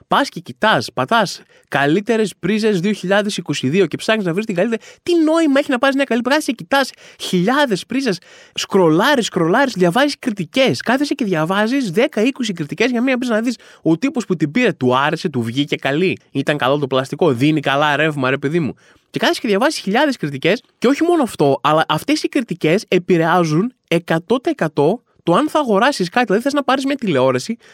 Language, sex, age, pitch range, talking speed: Greek, male, 20-39, 165-265 Hz, 180 wpm